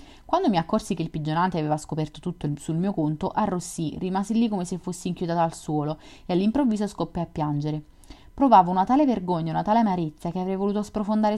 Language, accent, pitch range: Italian, native, 165-210 Hz